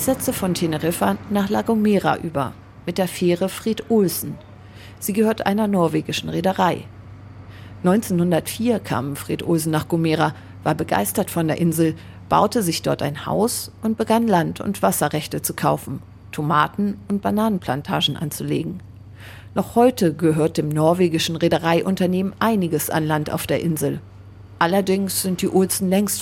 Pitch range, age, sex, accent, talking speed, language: 140-195 Hz, 40-59, female, German, 140 wpm, German